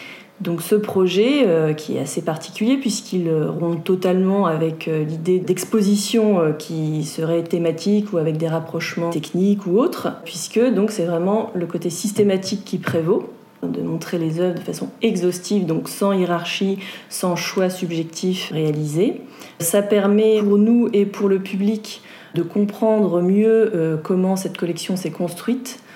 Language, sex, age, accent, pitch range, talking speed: French, female, 30-49, French, 170-210 Hz, 155 wpm